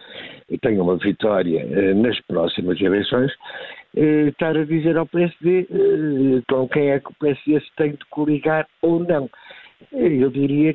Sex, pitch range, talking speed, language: male, 130-165 Hz, 160 wpm, Portuguese